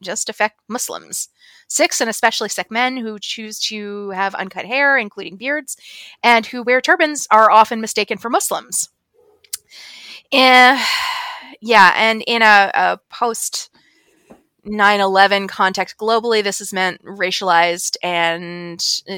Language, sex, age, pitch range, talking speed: English, female, 20-39, 180-230 Hz, 130 wpm